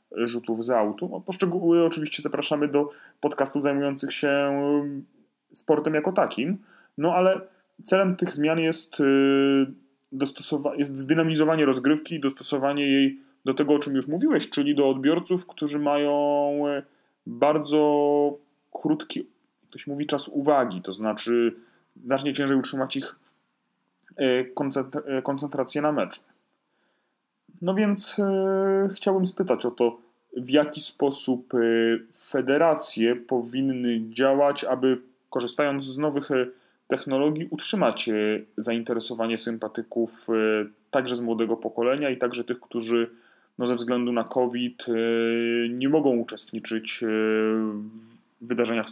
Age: 30-49